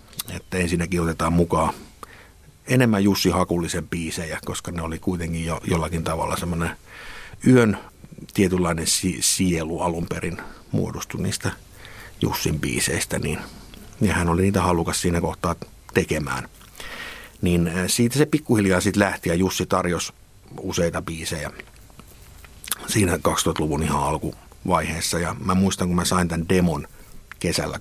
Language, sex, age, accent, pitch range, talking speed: Finnish, male, 50-69, native, 85-95 Hz, 125 wpm